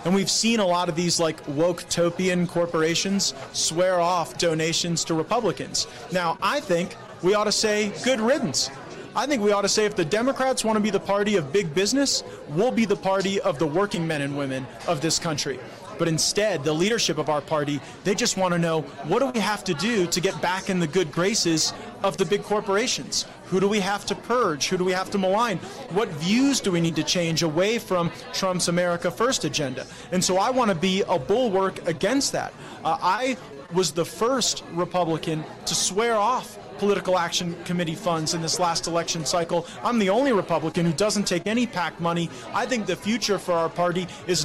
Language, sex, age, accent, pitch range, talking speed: English, male, 30-49, American, 170-205 Hz, 210 wpm